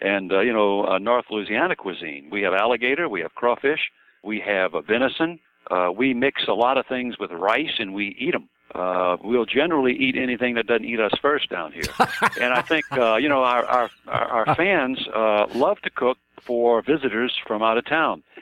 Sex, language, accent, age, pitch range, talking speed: male, English, American, 60-79, 105-125 Hz, 210 wpm